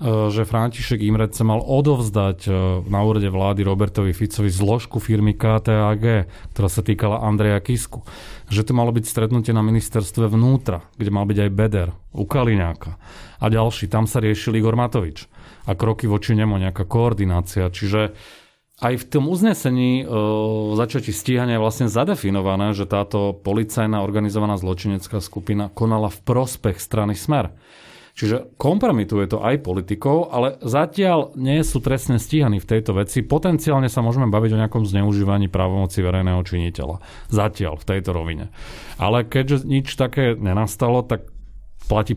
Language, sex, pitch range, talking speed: Slovak, male, 95-115 Hz, 145 wpm